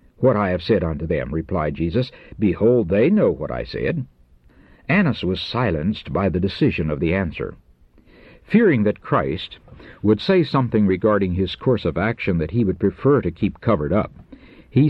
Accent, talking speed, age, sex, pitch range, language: American, 175 wpm, 60-79, male, 90-135 Hz, English